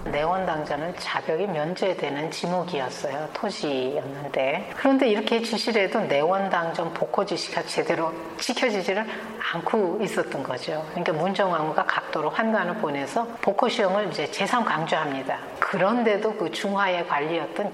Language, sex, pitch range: Korean, female, 185-250 Hz